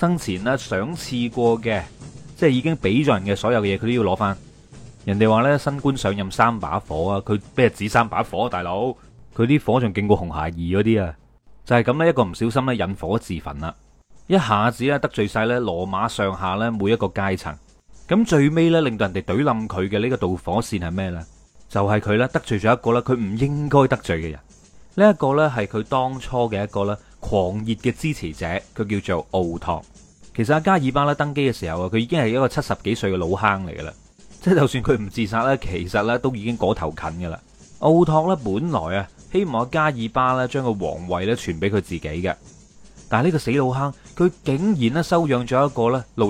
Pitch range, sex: 95-135 Hz, male